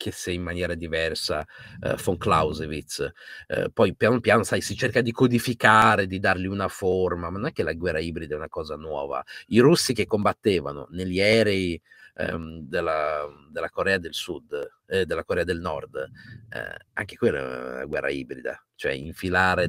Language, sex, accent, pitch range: Italian, male, native, 80-115 Hz